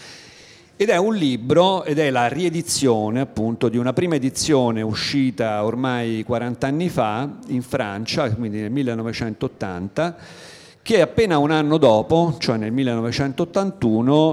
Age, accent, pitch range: 50-69, native, 110-140 Hz